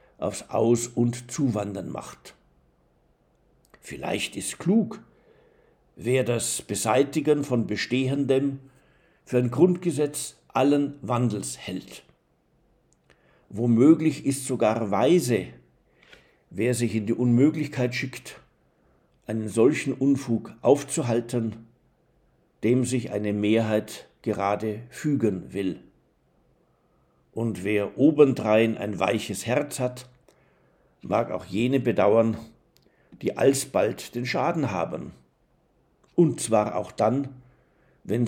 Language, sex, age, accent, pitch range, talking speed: German, male, 60-79, German, 110-135 Hz, 95 wpm